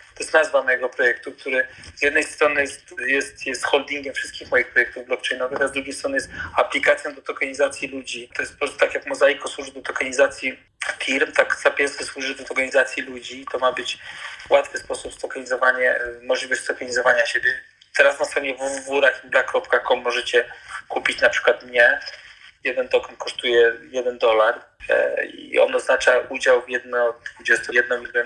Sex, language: male, Polish